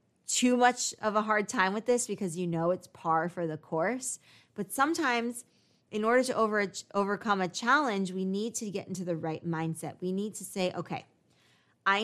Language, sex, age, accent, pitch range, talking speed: English, female, 20-39, American, 175-215 Hz, 195 wpm